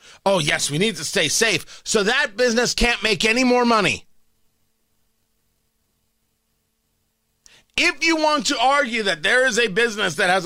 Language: English